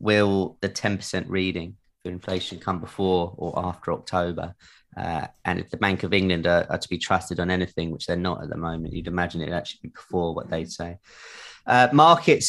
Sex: male